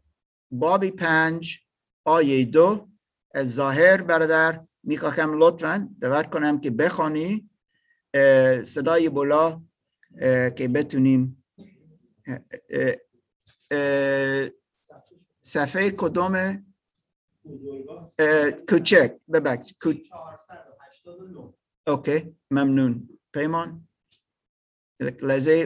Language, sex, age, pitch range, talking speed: Persian, male, 50-69, 135-165 Hz, 55 wpm